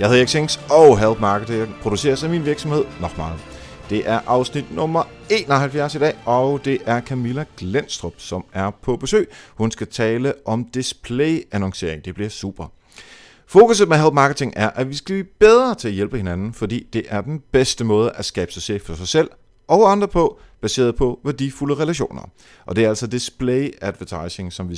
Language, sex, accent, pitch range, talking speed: Danish, male, native, 105-140 Hz, 190 wpm